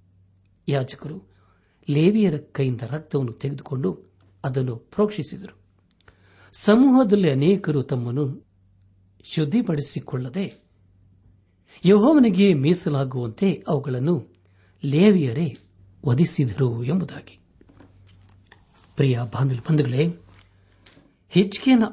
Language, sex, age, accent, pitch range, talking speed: Kannada, male, 60-79, native, 95-160 Hz, 50 wpm